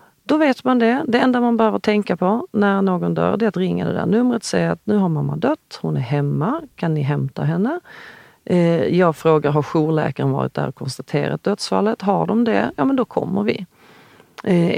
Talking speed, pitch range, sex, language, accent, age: 210 wpm, 150-205 Hz, female, Swedish, native, 40-59